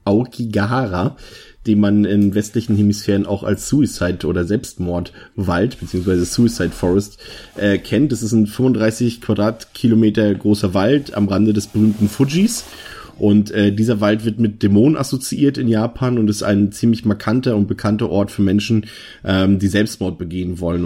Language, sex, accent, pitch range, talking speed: German, male, German, 95-110 Hz, 150 wpm